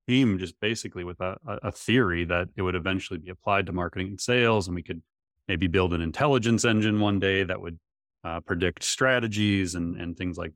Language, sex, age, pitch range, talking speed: English, male, 30-49, 90-105 Hz, 205 wpm